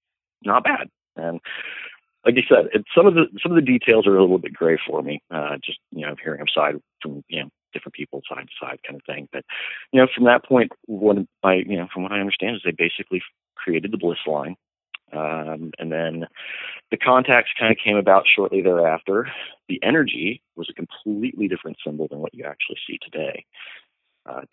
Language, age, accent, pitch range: English, 40-59, American, 80-115 Hz